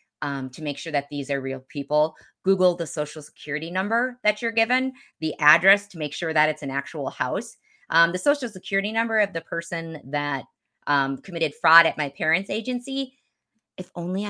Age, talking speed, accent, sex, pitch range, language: 30-49, 190 wpm, American, female, 150-205 Hz, English